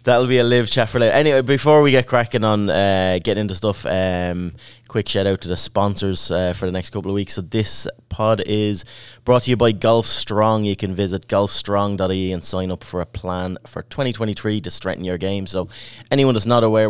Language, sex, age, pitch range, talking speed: English, male, 20-39, 95-115 Hz, 220 wpm